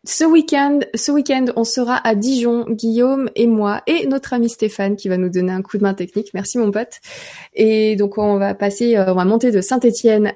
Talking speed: 215 wpm